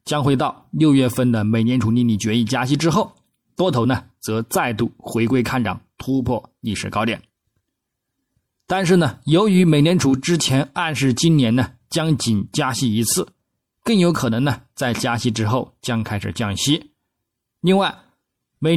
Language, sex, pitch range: Chinese, male, 115-155 Hz